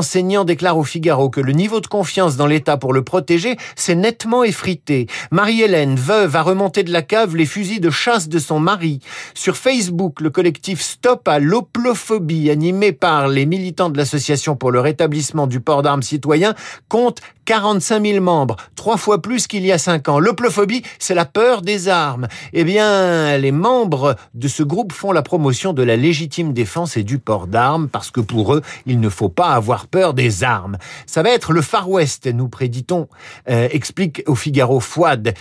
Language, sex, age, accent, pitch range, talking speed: French, male, 50-69, French, 140-195 Hz, 190 wpm